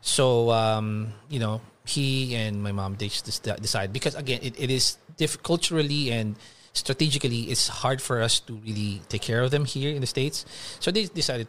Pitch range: 105-140 Hz